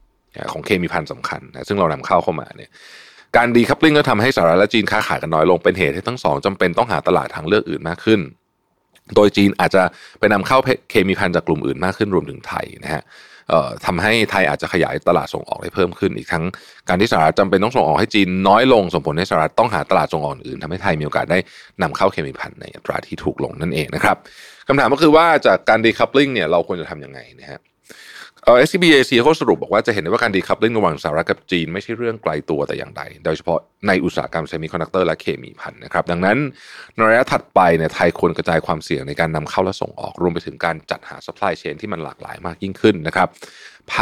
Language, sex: Thai, male